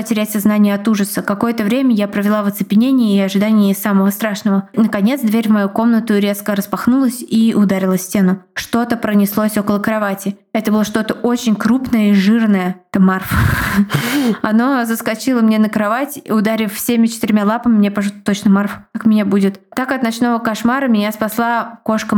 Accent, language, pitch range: native, Russian, 205-230 Hz